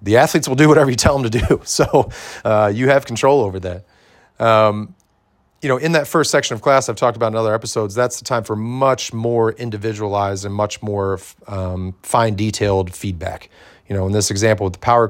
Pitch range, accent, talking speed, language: 95-115 Hz, American, 215 wpm, English